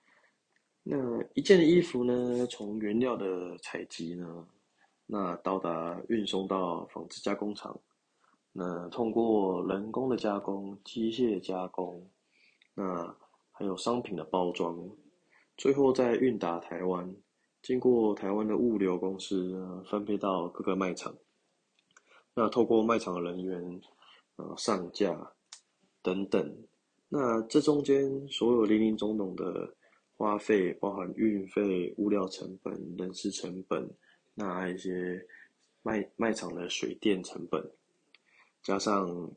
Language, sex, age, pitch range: Chinese, male, 20-39, 90-115 Hz